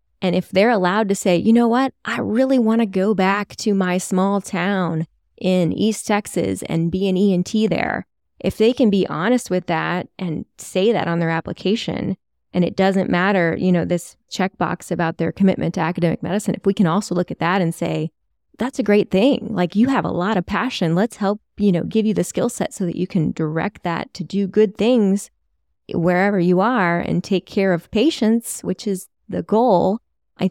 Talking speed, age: 210 wpm, 20-39